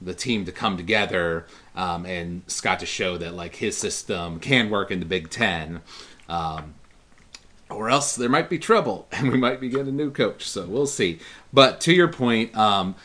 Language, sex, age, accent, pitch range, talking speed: English, male, 30-49, American, 90-115 Hz, 200 wpm